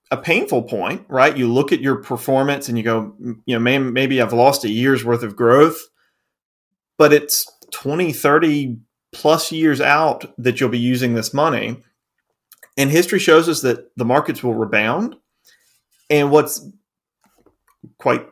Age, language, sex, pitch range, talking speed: 30-49, English, male, 115-135 Hz, 155 wpm